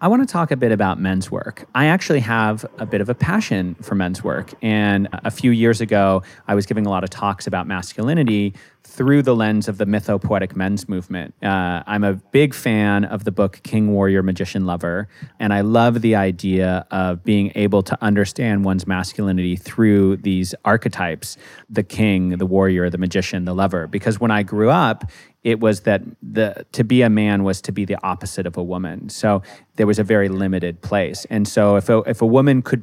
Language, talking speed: English, 205 wpm